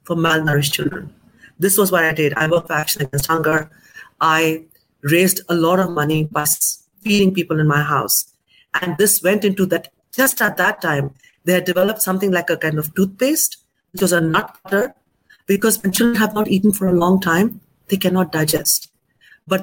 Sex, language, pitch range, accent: female, English, 165-195 Hz, Indian